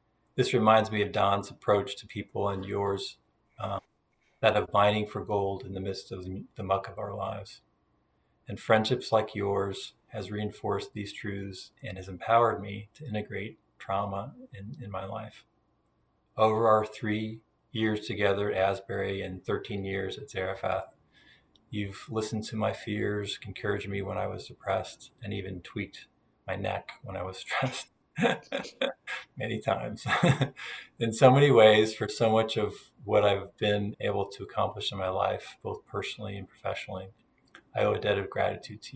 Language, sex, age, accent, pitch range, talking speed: English, male, 40-59, American, 95-110 Hz, 165 wpm